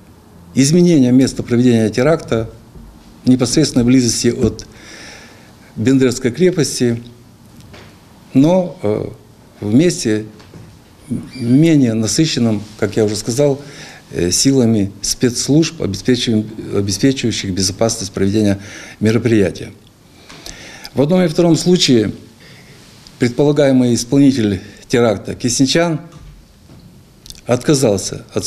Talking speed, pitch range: 75 wpm, 105-140 Hz